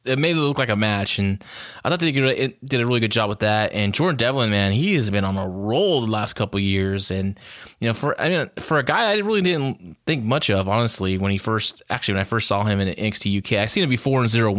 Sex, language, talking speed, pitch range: male, English, 275 wpm, 105-130 Hz